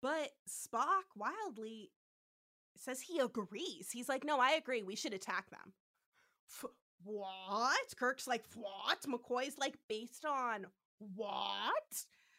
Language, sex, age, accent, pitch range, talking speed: English, female, 20-39, American, 230-330 Hz, 125 wpm